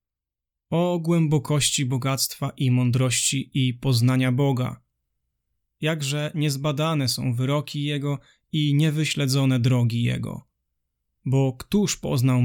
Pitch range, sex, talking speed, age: 120-150 Hz, male, 95 wpm, 20-39